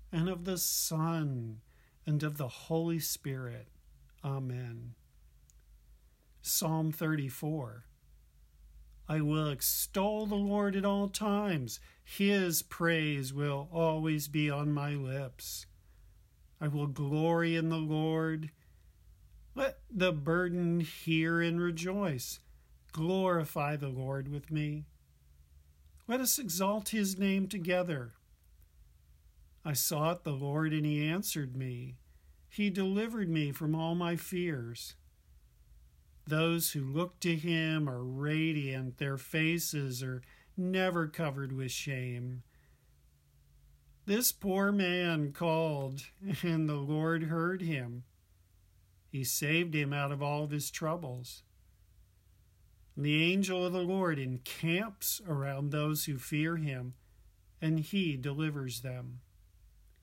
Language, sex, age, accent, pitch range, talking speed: English, male, 50-69, American, 110-165 Hz, 115 wpm